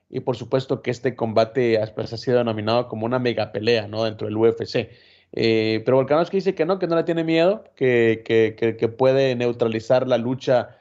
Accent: Mexican